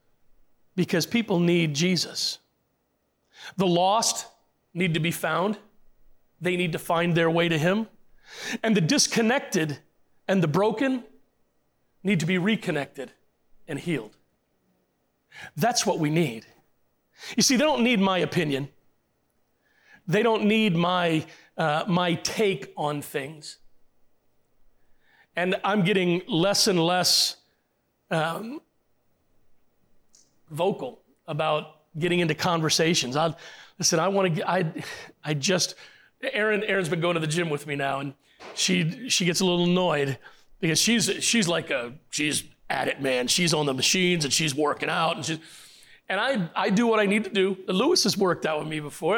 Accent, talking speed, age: American, 150 wpm, 40-59